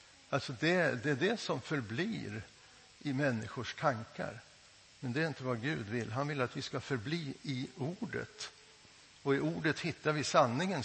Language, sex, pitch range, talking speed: Swedish, male, 120-165 Hz, 170 wpm